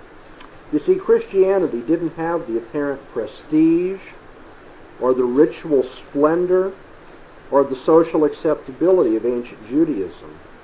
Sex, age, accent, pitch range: male, 50-69, American, 130-175 Hz